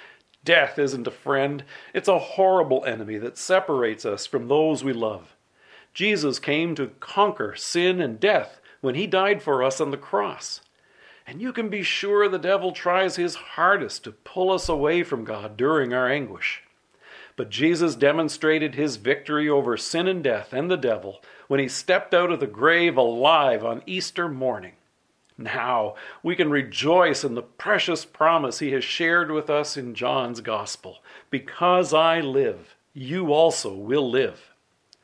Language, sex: English, male